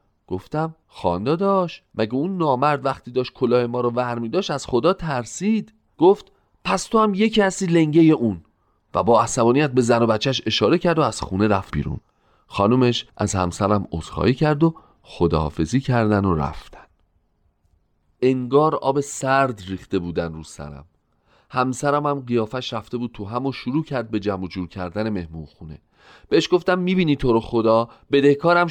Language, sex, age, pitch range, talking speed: Persian, male, 40-59, 105-155 Hz, 165 wpm